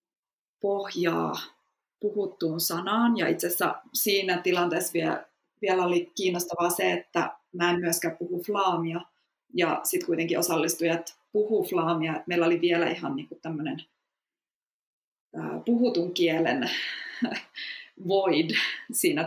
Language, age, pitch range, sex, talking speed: Finnish, 20-39, 180-235 Hz, female, 110 wpm